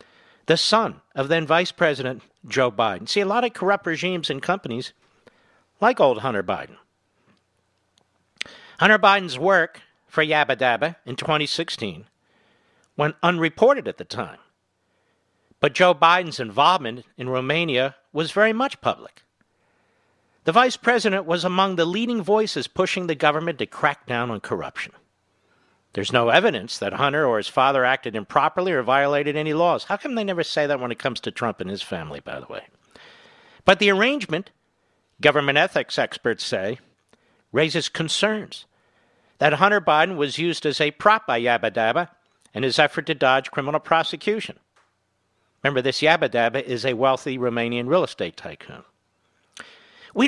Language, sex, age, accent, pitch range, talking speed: English, male, 50-69, American, 130-185 Hz, 155 wpm